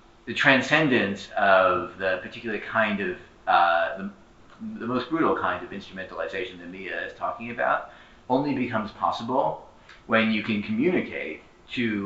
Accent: American